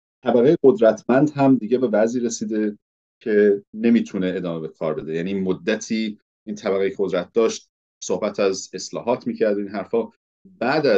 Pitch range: 90-110 Hz